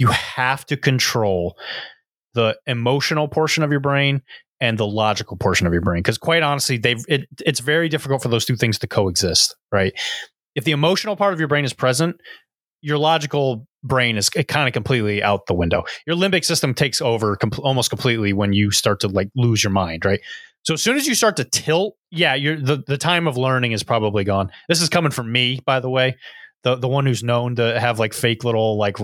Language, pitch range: English, 110-160 Hz